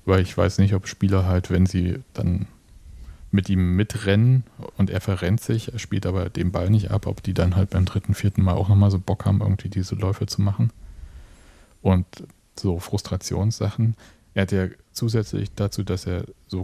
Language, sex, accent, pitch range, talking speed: German, male, German, 90-105 Hz, 190 wpm